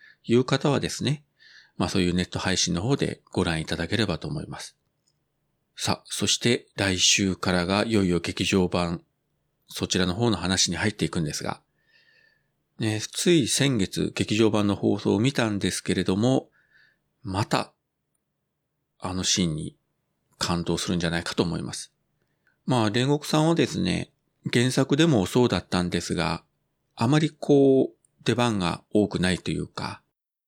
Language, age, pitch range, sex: Japanese, 40-59, 90-125 Hz, male